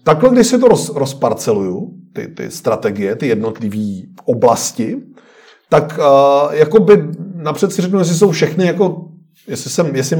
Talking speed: 140 wpm